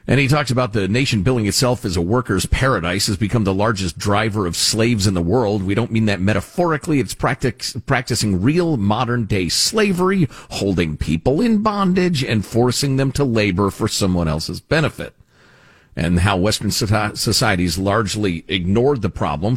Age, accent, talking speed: 50-69, American, 170 wpm